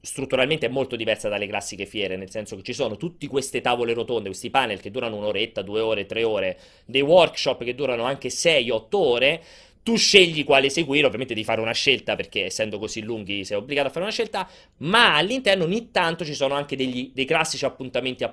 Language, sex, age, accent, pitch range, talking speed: Italian, male, 30-49, native, 115-165 Hz, 210 wpm